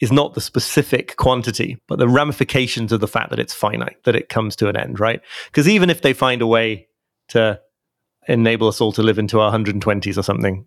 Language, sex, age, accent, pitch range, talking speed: English, male, 30-49, British, 110-135 Hz, 220 wpm